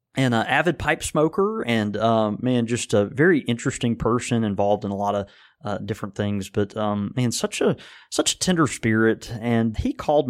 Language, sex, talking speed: English, male, 190 wpm